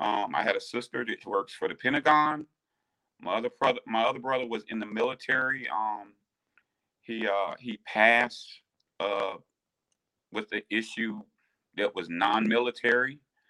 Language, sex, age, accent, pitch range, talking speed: English, male, 40-59, American, 110-140 Hz, 140 wpm